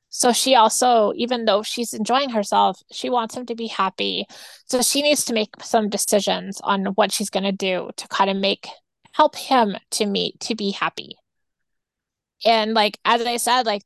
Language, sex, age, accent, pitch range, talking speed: English, female, 20-39, American, 200-240 Hz, 190 wpm